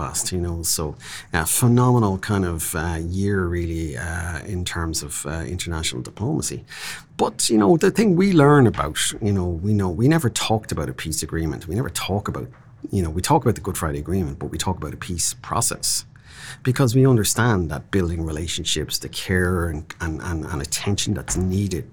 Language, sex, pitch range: Chinese, male, 85-115 Hz